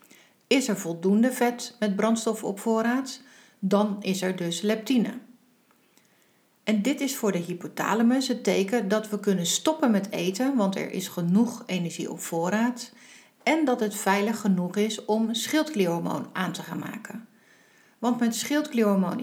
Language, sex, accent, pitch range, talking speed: Dutch, female, Dutch, 190-240 Hz, 155 wpm